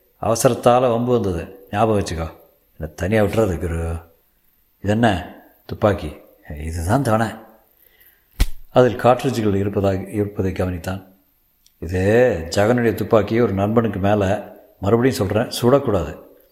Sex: male